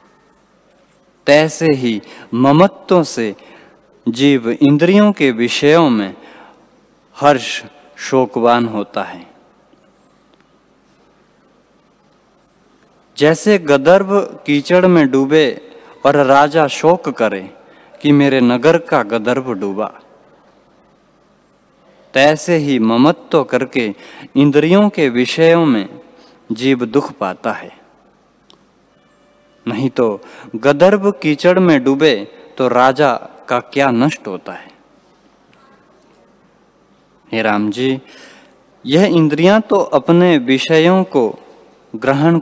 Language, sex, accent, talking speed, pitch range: Hindi, male, native, 90 wpm, 125-165 Hz